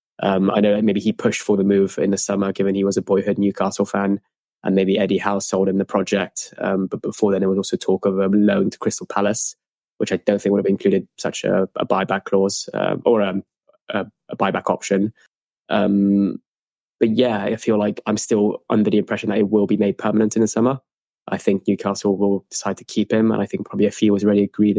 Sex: male